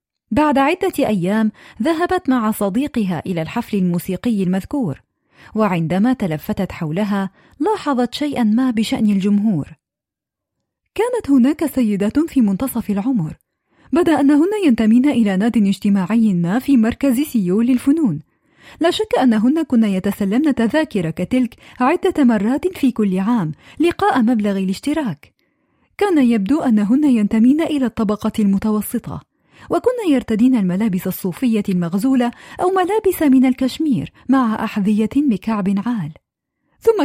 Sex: female